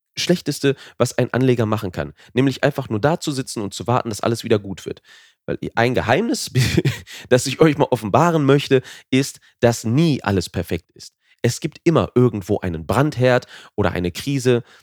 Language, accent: German, German